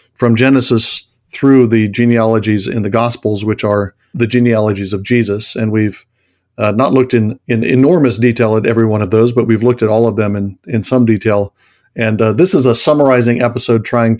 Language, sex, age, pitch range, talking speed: English, male, 50-69, 110-120 Hz, 200 wpm